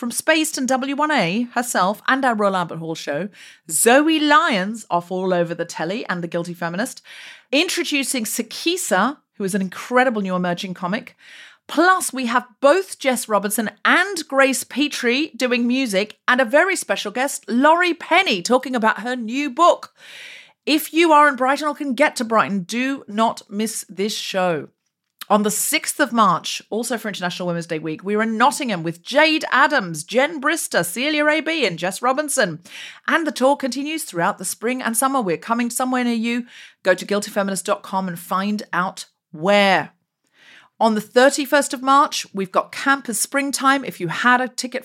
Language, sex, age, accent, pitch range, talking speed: English, female, 40-59, British, 185-275 Hz, 175 wpm